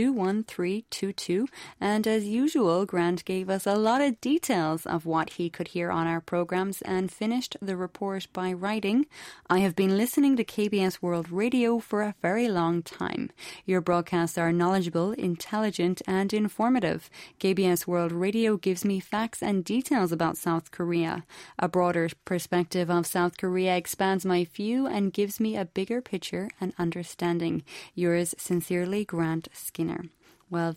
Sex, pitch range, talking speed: female, 175-210 Hz, 150 wpm